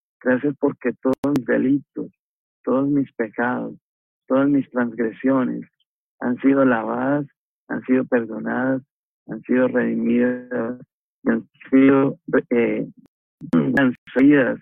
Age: 50-69